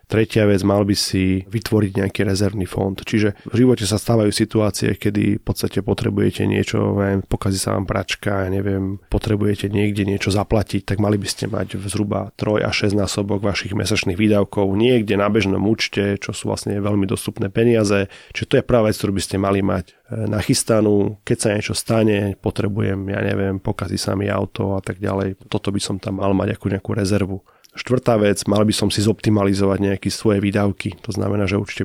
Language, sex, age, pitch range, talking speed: Slovak, male, 30-49, 100-110 Hz, 190 wpm